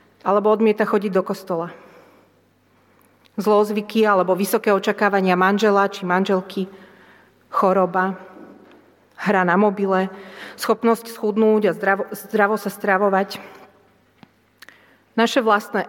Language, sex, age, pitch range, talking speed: Slovak, female, 40-59, 190-225 Hz, 95 wpm